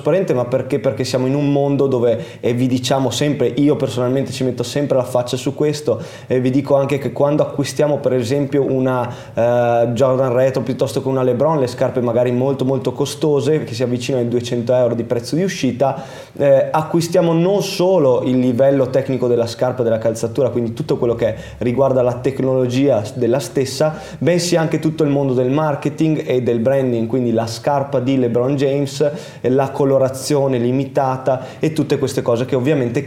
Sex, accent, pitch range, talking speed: male, native, 125-140 Hz, 185 wpm